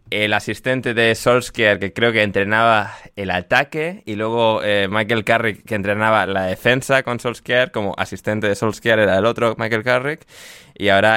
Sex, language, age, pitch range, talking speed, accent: male, Spanish, 20-39, 95-110 Hz, 170 wpm, Spanish